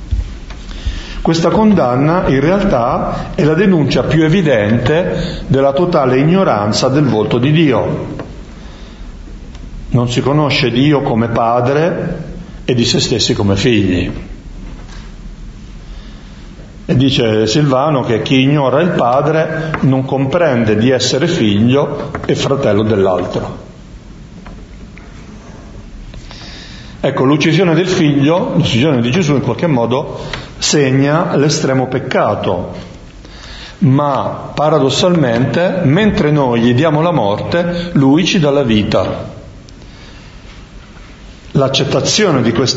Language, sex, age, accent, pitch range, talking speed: Italian, male, 50-69, native, 120-160 Hz, 100 wpm